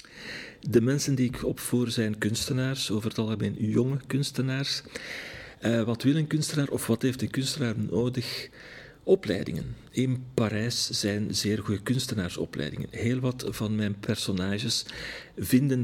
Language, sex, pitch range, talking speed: Dutch, male, 105-130 Hz, 135 wpm